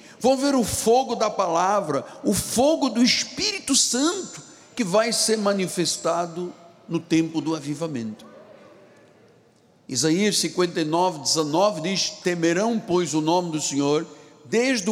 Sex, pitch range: male, 180-240 Hz